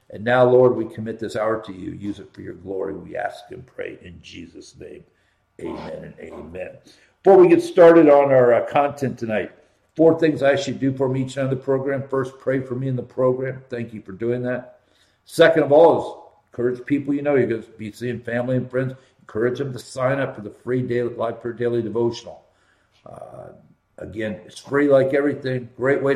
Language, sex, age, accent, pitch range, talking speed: English, male, 60-79, American, 115-135 Hz, 215 wpm